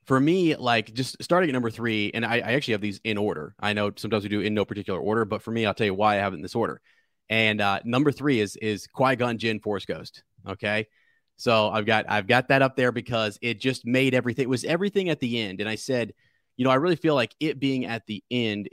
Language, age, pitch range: English, 30-49, 105-125 Hz